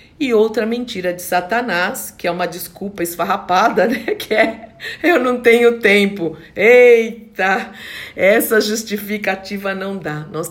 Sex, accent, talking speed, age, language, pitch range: female, Brazilian, 130 wpm, 50-69, Portuguese, 175-225 Hz